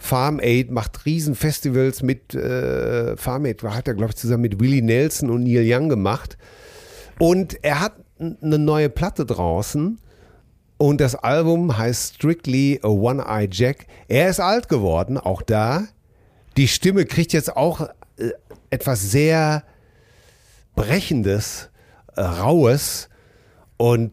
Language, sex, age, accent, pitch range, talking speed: German, male, 40-59, German, 100-145 Hz, 140 wpm